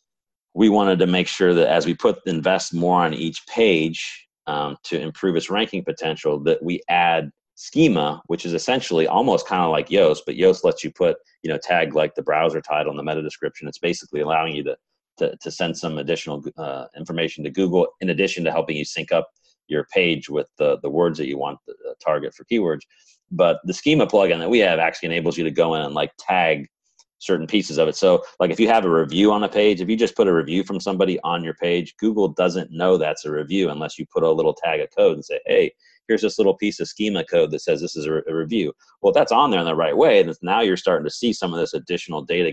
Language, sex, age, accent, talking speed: English, male, 40-59, American, 245 wpm